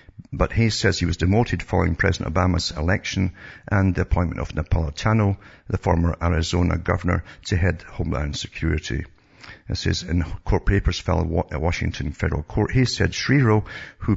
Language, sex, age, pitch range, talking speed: English, male, 60-79, 85-100 Hz, 155 wpm